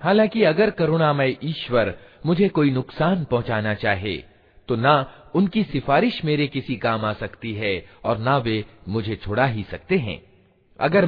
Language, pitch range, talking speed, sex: Hindi, 110-175 Hz, 155 wpm, male